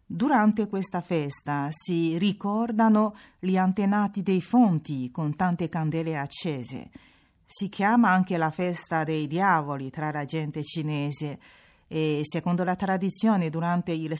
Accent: native